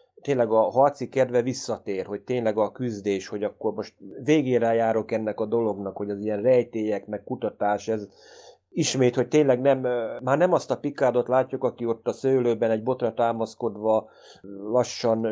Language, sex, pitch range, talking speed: Hungarian, male, 105-125 Hz, 165 wpm